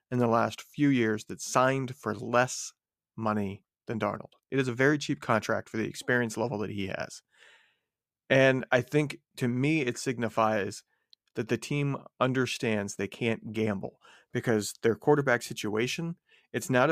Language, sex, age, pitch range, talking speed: English, male, 40-59, 115-145 Hz, 160 wpm